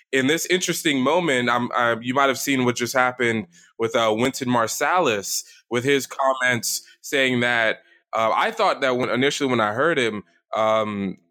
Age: 20-39